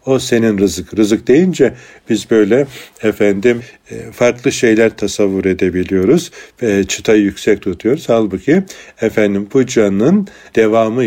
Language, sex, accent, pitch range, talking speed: Turkish, male, native, 100-110 Hz, 110 wpm